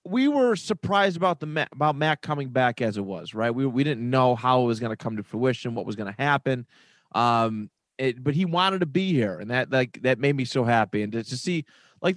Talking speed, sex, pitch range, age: 240 wpm, male, 115-165 Hz, 30-49